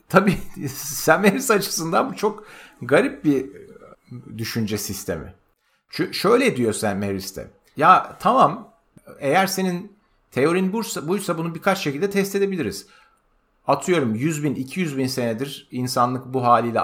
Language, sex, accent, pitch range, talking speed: Turkish, male, native, 110-170 Hz, 120 wpm